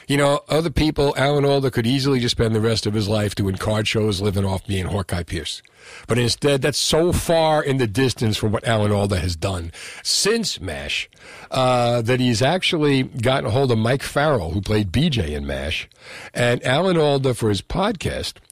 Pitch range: 110-145 Hz